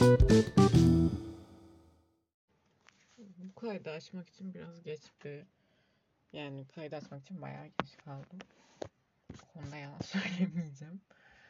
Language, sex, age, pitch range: Turkish, female, 20-39, 150-195 Hz